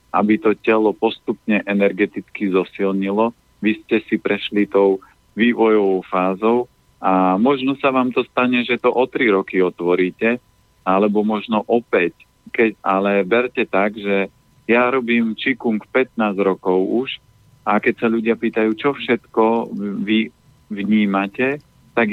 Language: Slovak